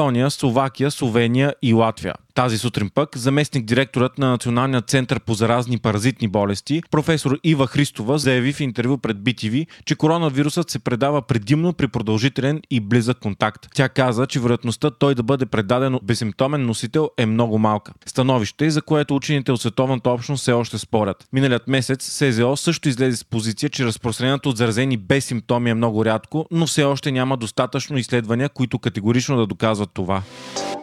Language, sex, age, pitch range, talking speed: Bulgarian, male, 30-49, 115-140 Hz, 160 wpm